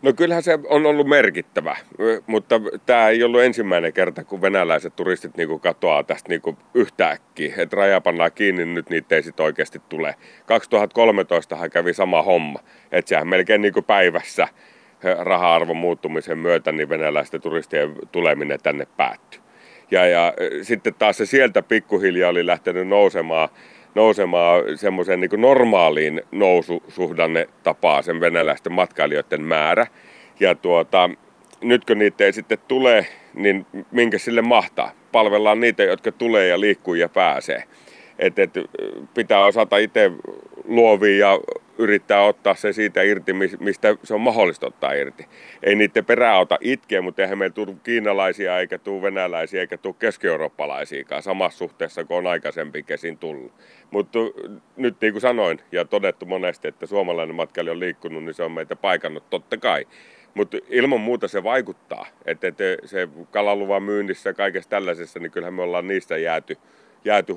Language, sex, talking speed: Finnish, male, 150 wpm